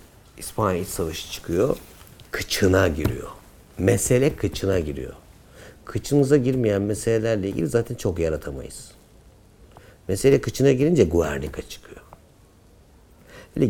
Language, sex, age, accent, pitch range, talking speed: Turkish, male, 60-79, native, 85-125 Hz, 90 wpm